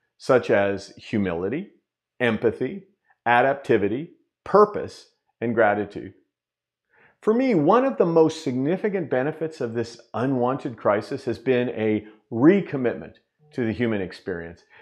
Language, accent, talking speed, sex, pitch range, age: English, American, 115 wpm, male, 105-150 Hz, 40-59